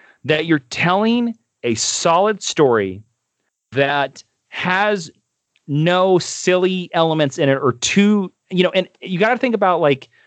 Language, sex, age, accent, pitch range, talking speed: English, male, 30-49, American, 115-170 Hz, 140 wpm